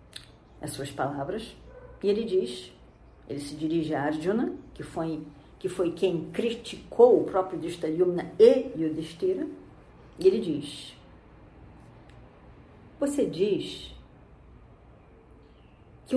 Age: 40-59